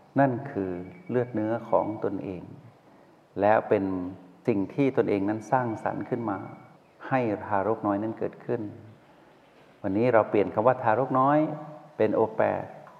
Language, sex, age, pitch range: Thai, male, 60-79, 100-130 Hz